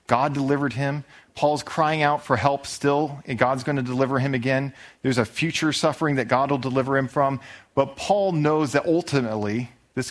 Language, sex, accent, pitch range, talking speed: English, male, American, 110-150 Hz, 190 wpm